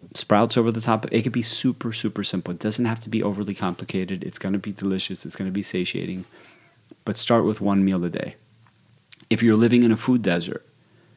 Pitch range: 95-115 Hz